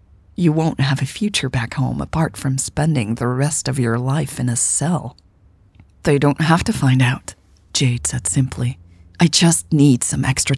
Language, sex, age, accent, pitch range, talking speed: English, female, 40-59, American, 100-145 Hz, 180 wpm